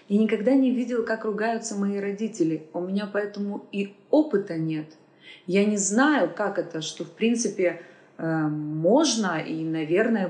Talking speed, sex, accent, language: 150 wpm, female, native, Russian